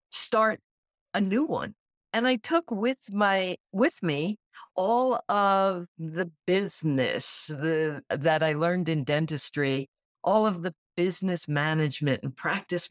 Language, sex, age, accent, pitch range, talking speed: English, female, 50-69, American, 150-195 Hz, 130 wpm